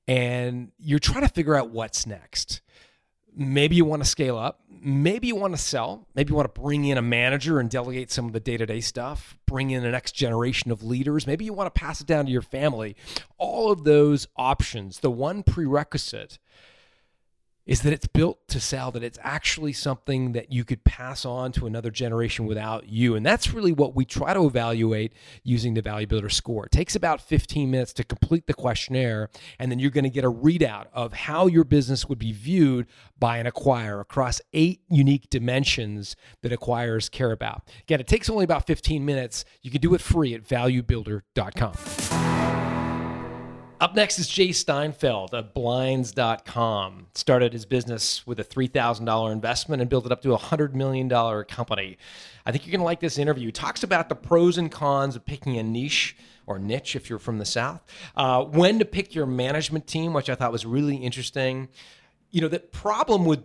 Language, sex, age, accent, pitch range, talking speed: English, male, 30-49, American, 115-145 Hz, 195 wpm